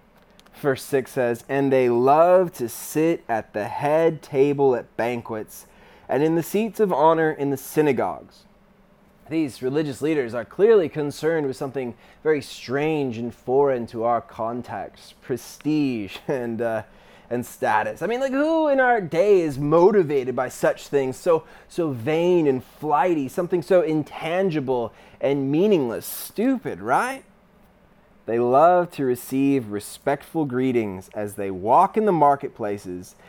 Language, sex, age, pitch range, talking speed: English, male, 20-39, 120-185 Hz, 140 wpm